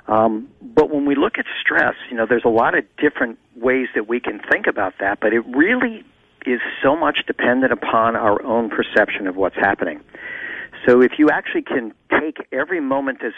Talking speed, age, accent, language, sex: 195 wpm, 50-69, American, English, male